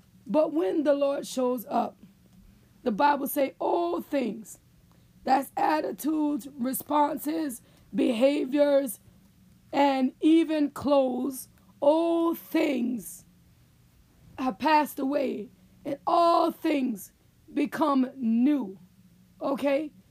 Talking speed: 85 wpm